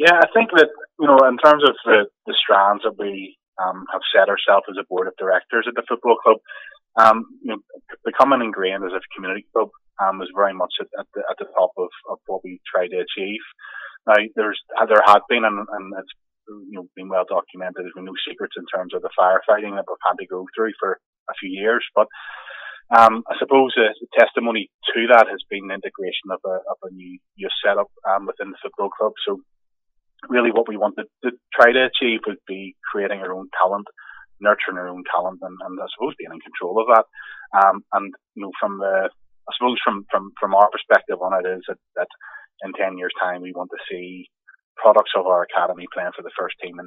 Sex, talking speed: male, 225 wpm